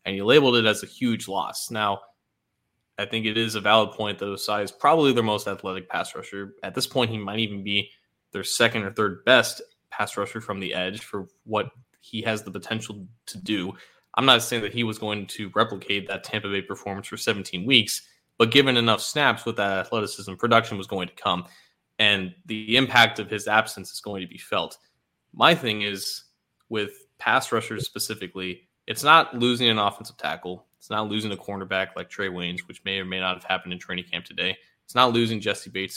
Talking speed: 210 wpm